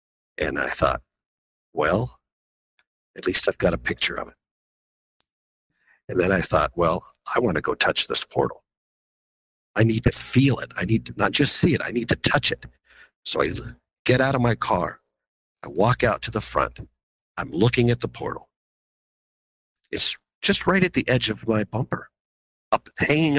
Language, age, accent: English, 50-69, American